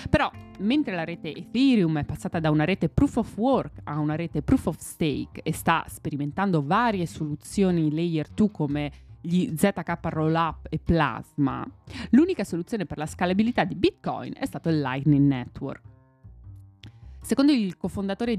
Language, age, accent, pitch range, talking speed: Italian, 20-39, native, 155-225 Hz, 155 wpm